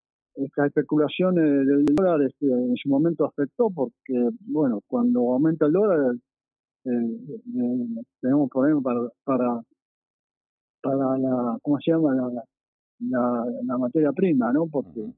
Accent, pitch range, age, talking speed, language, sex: Argentinian, 130-170 Hz, 40-59, 125 wpm, Spanish, male